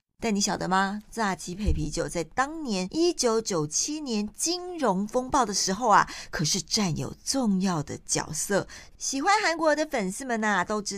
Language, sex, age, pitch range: Chinese, female, 50-69, 175-265 Hz